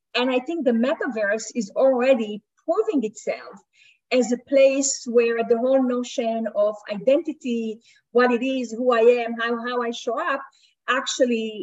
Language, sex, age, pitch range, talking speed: English, female, 30-49, 220-260 Hz, 155 wpm